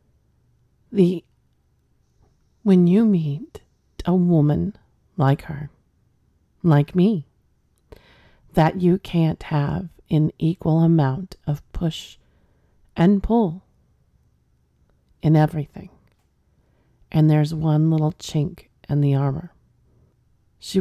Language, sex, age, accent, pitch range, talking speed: English, female, 40-59, American, 140-175 Hz, 90 wpm